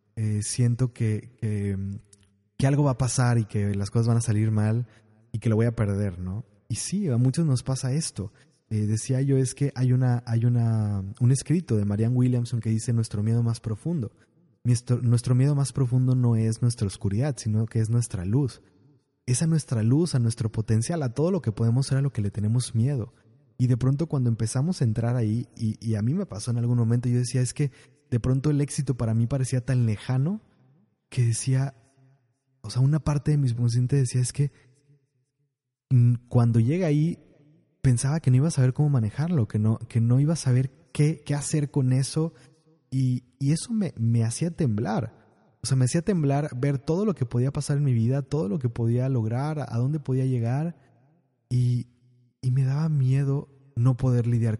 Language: Spanish